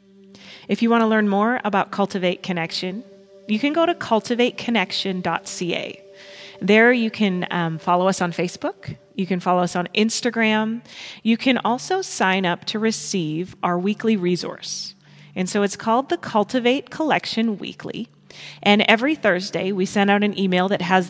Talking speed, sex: 160 wpm, female